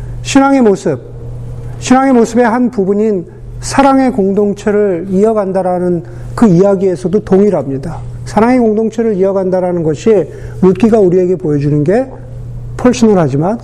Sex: male